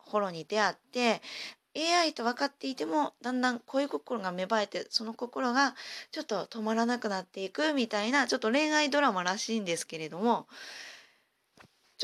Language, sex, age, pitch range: Japanese, female, 20-39, 180-245 Hz